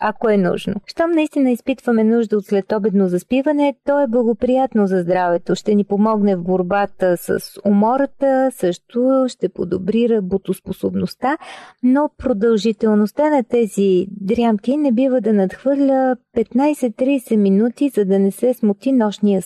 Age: 40-59